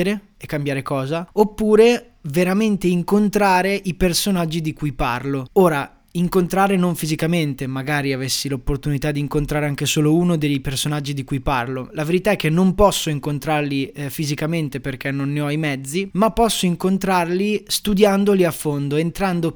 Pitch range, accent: 150-185 Hz, native